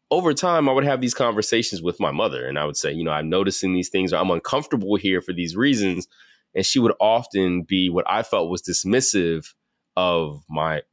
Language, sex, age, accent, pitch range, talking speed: English, male, 20-39, American, 90-115 Hz, 215 wpm